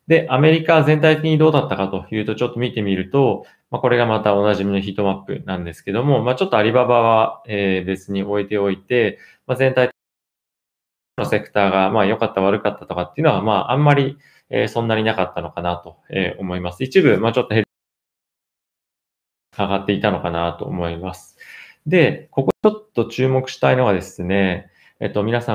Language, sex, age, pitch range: Japanese, male, 20-39, 95-120 Hz